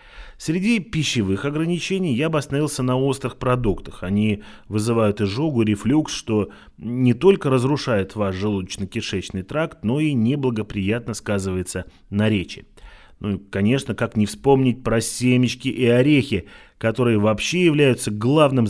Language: Russian